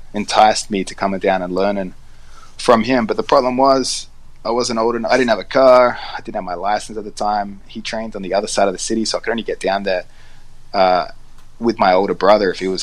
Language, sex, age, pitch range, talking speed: English, male, 20-39, 95-115 Hz, 250 wpm